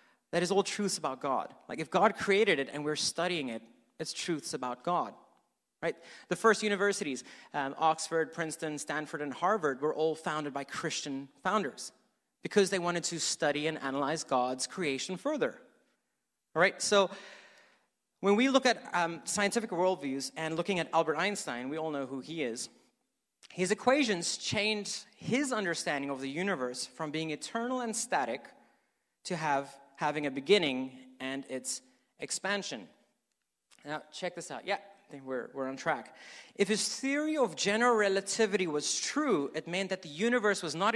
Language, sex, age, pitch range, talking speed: English, male, 30-49, 145-205 Hz, 165 wpm